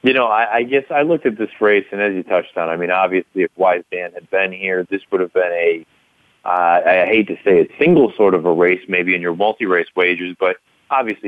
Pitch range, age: 90-115 Hz, 30-49